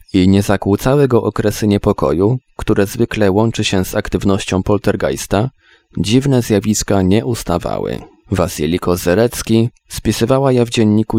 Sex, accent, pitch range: male, native, 95-120 Hz